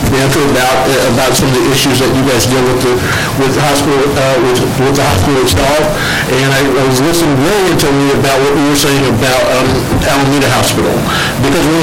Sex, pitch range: male, 130-150 Hz